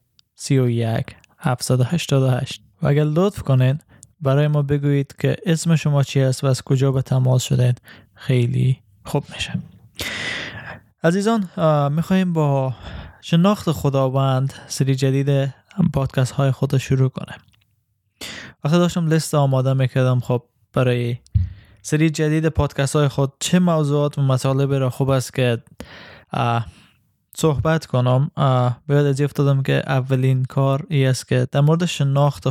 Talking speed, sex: 120 wpm, male